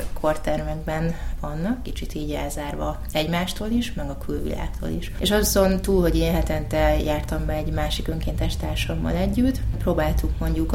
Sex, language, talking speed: female, Hungarian, 145 wpm